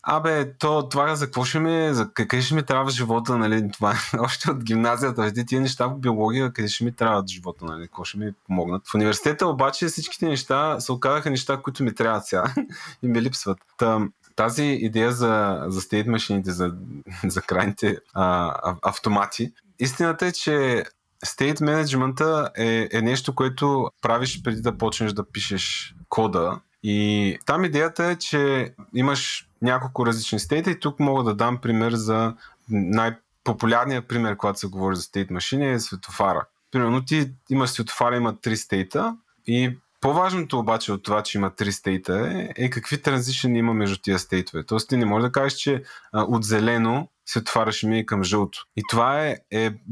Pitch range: 105-135 Hz